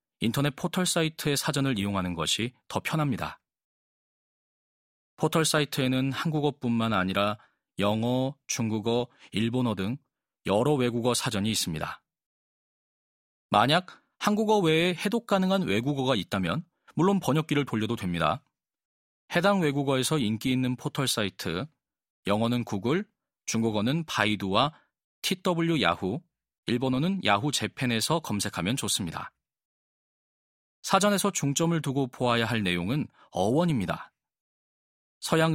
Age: 40-59